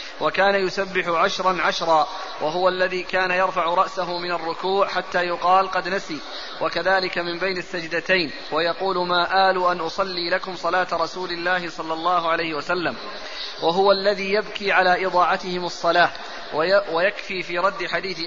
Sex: male